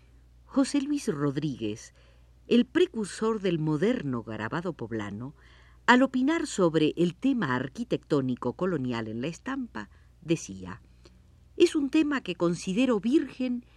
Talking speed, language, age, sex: 115 wpm, Spanish, 50-69, female